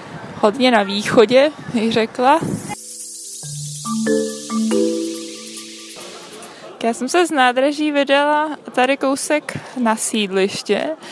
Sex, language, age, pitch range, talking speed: female, Czech, 20-39, 205-240 Hz, 75 wpm